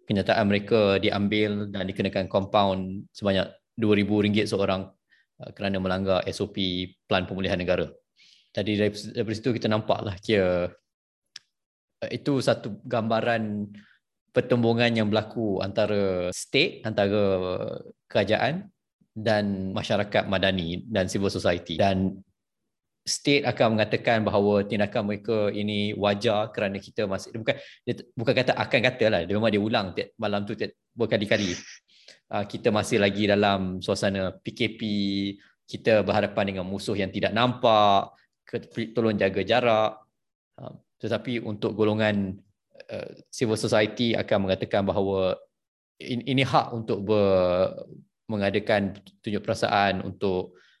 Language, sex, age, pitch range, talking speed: Malay, male, 20-39, 95-110 Hz, 125 wpm